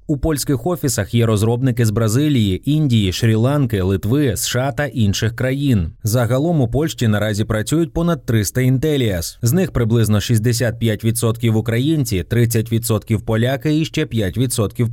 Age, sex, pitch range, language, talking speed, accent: 20-39, male, 110-140 Hz, Ukrainian, 140 wpm, native